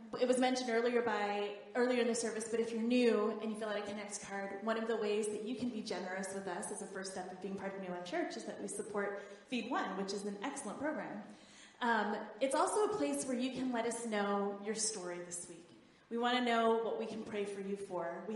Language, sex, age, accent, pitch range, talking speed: English, female, 20-39, American, 195-245 Hz, 260 wpm